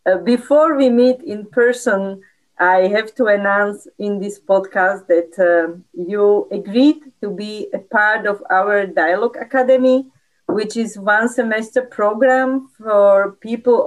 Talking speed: 140 wpm